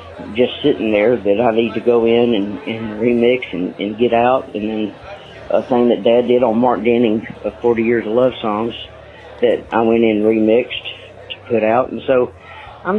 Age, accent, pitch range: 40-59, American, 110-130 Hz